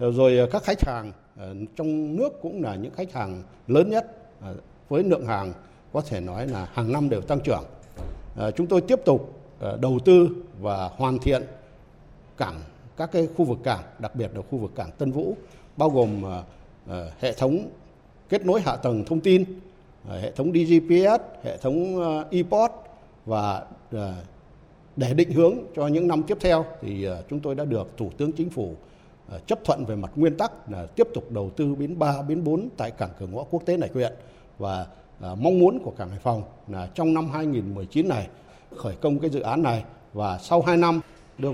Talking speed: 185 wpm